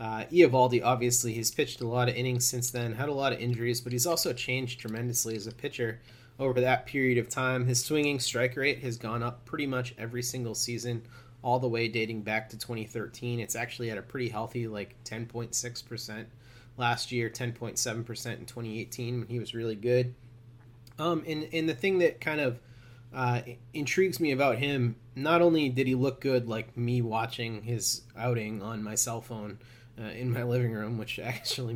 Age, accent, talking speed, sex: 30-49, American, 190 wpm, male